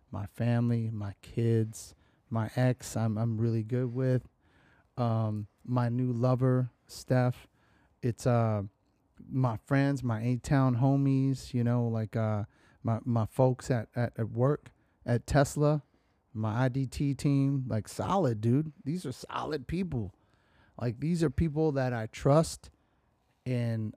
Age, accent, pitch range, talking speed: 30-49, American, 115-150 Hz, 135 wpm